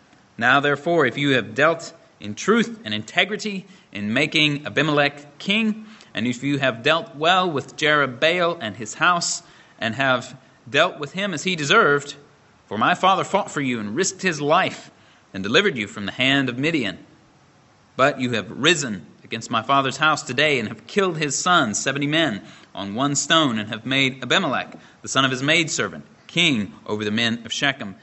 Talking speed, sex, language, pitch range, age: 180 wpm, male, English, 125-170 Hz, 30-49